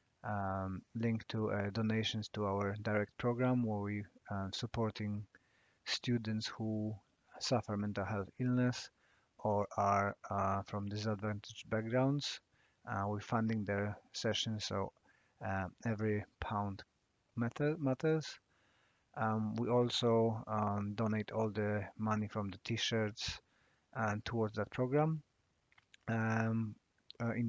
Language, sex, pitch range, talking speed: English, male, 105-115 Hz, 115 wpm